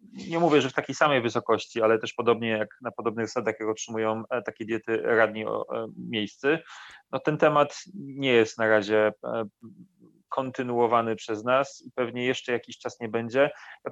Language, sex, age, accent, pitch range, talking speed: Polish, male, 30-49, native, 115-135 Hz, 175 wpm